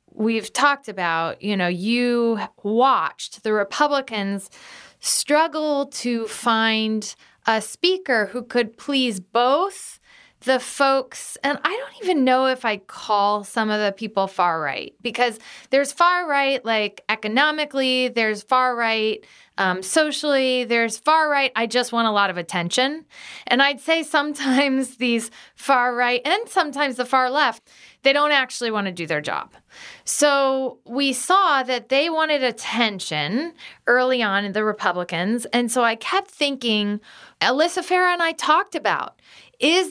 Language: English